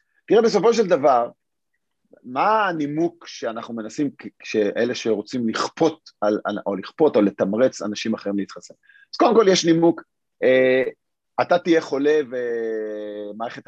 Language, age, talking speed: Hebrew, 40-59, 120 wpm